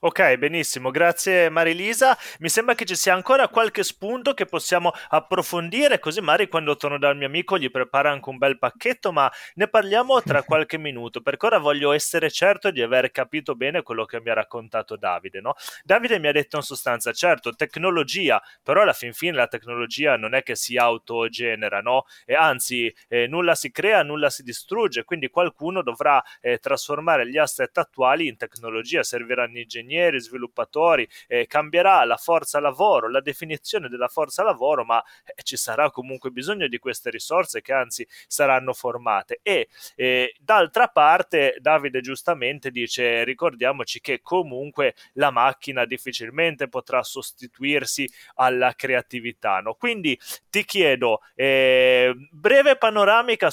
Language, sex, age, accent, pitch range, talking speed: Italian, male, 20-39, native, 130-195 Hz, 155 wpm